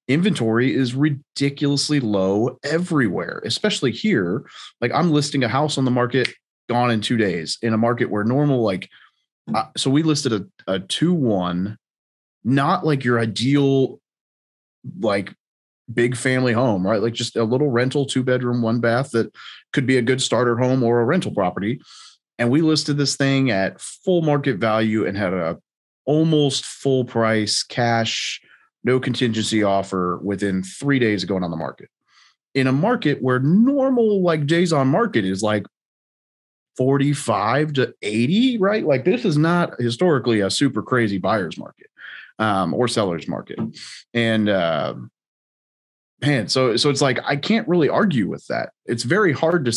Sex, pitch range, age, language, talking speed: male, 110-145 Hz, 30-49, English, 165 wpm